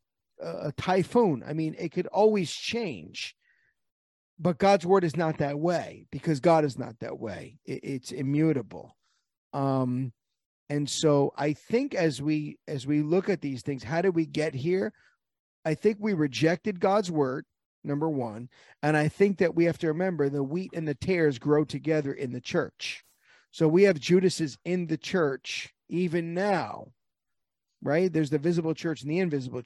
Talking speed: 170 wpm